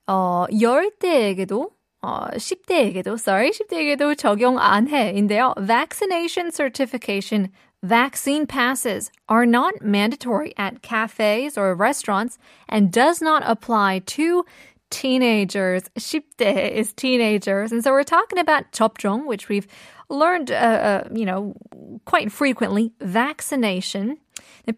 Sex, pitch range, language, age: female, 210-290 Hz, Korean, 20-39